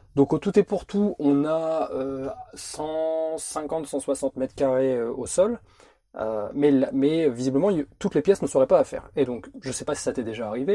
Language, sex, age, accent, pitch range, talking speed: French, male, 20-39, French, 130-165 Hz, 205 wpm